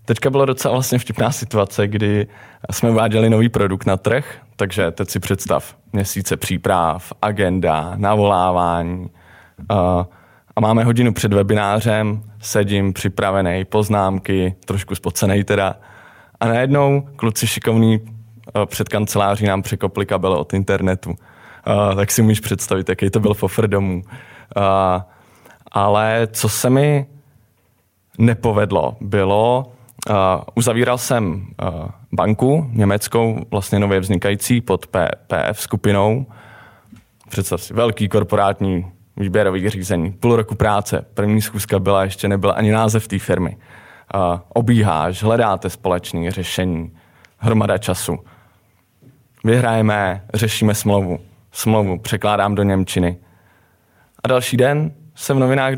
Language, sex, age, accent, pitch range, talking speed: Czech, male, 20-39, native, 95-115 Hz, 115 wpm